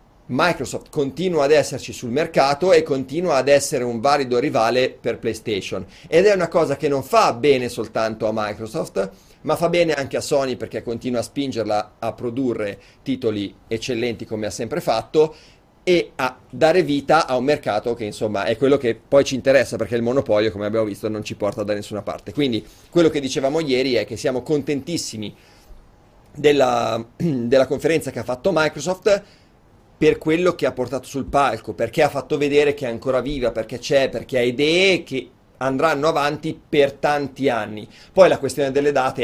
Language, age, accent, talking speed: Italian, 40-59, native, 180 wpm